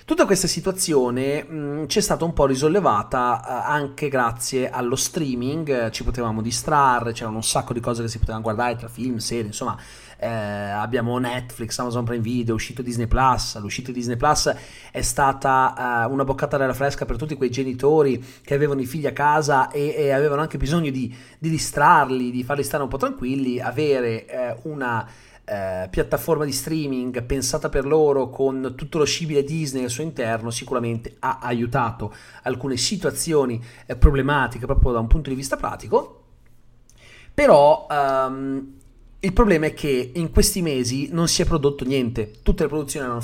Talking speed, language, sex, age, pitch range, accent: 175 wpm, Italian, male, 30-49, 120-150 Hz, native